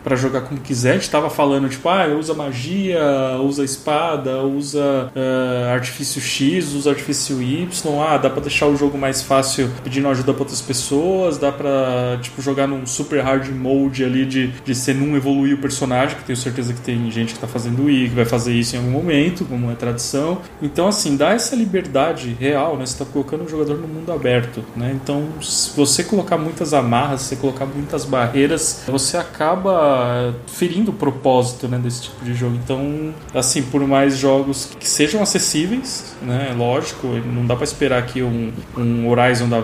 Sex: male